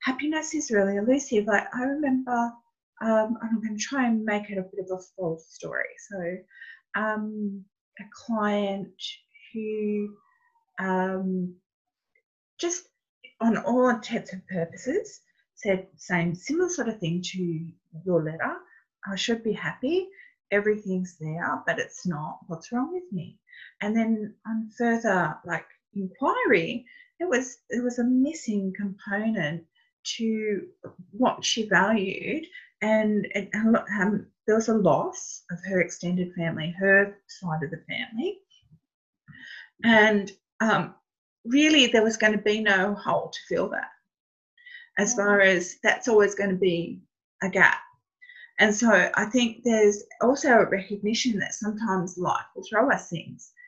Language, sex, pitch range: English, female, 190-250 Hz